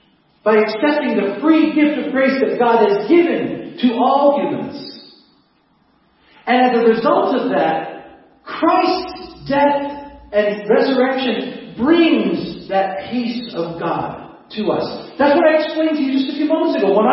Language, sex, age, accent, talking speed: English, male, 40-59, American, 150 wpm